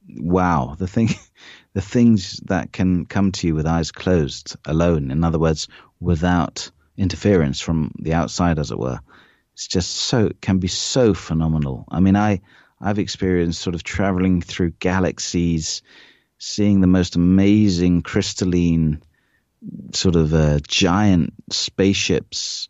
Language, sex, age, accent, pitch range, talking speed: English, male, 30-49, British, 80-100 Hz, 140 wpm